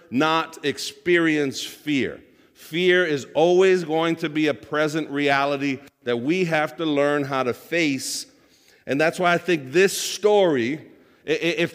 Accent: American